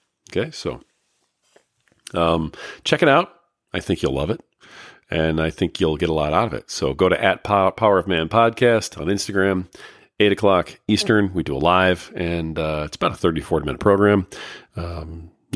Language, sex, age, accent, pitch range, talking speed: English, male, 40-59, American, 80-105 Hz, 190 wpm